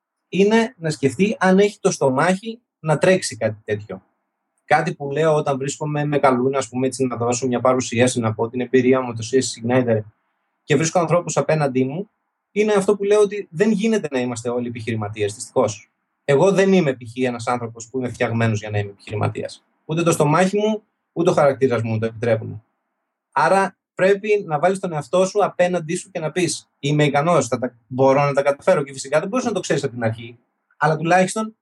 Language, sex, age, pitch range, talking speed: Greek, male, 20-39, 130-185 Hz, 190 wpm